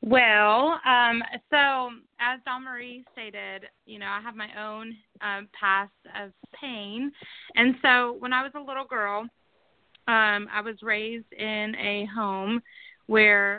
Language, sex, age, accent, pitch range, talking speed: English, female, 20-39, American, 195-230 Hz, 145 wpm